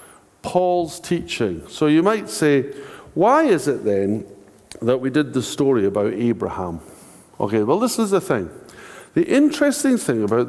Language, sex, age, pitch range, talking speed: English, male, 50-69, 115-180 Hz, 155 wpm